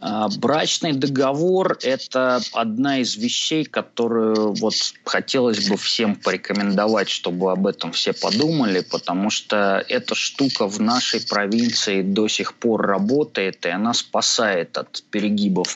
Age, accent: 20-39, native